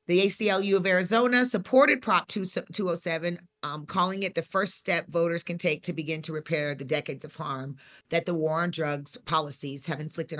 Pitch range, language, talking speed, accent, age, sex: 160-200 Hz, English, 185 wpm, American, 40-59, female